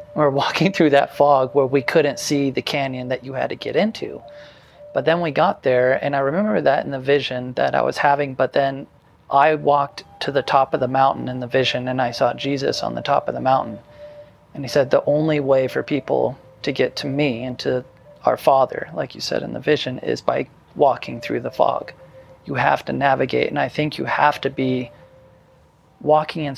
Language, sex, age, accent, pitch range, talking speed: English, male, 30-49, American, 130-145 Hz, 220 wpm